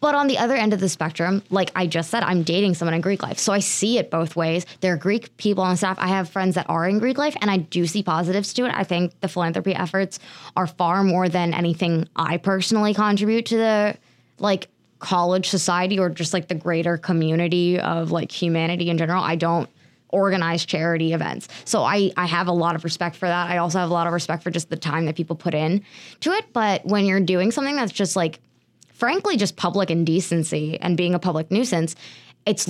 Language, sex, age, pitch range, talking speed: English, female, 20-39, 165-195 Hz, 230 wpm